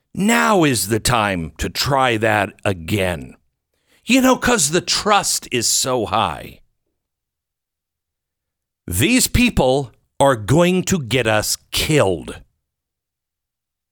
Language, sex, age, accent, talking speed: English, male, 50-69, American, 105 wpm